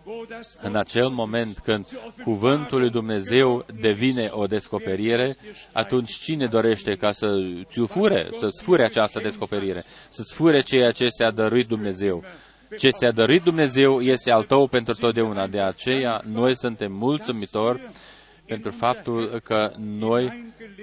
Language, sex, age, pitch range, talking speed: Romanian, male, 20-39, 110-150 Hz, 125 wpm